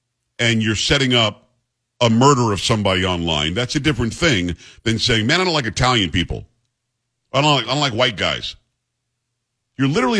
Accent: American